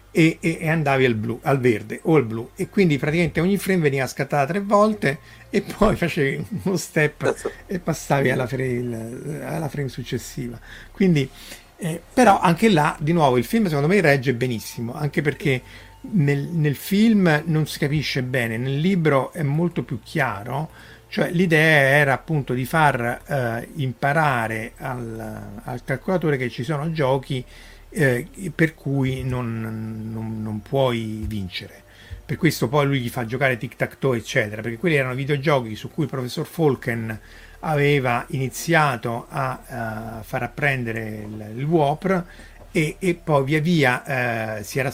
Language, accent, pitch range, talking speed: Italian, native, 115-155 Hz, 155 wpm